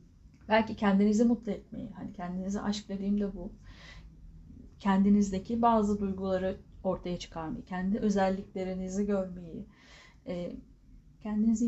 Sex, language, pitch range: female, Turkish, 180-230 Hz